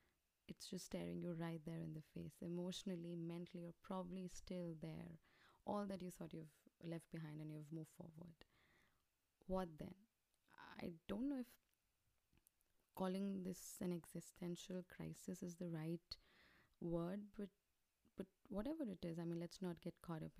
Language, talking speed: English, 155 wpm